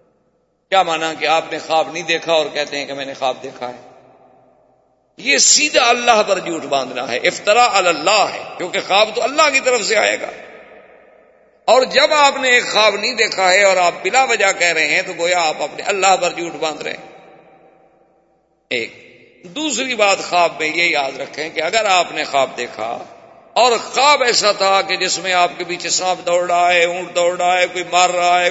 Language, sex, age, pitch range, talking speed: Urdu, male, 50-69, 165-235 Hz, 205 wpm